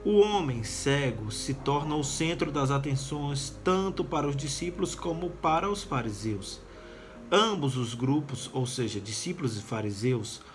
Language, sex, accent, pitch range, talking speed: Portuguese, male, Brazilian, 130-170 Hz, 140 wpm